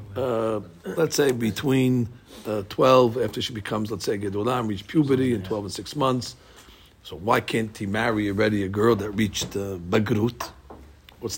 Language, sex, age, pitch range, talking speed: English, male, 50-69, 105-125 Hz, 170 wpm